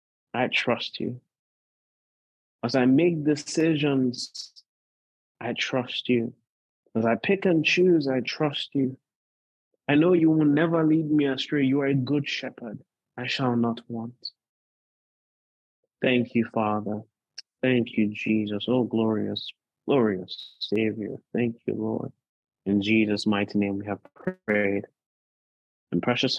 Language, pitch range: English, 105-130 Hz